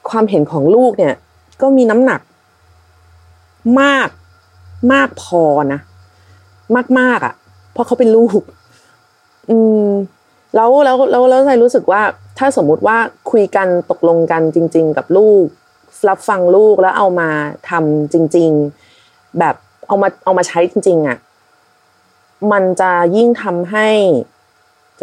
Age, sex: 30-49, female